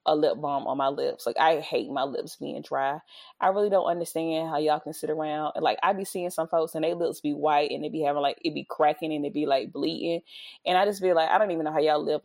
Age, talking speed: 20-39, 285 wpm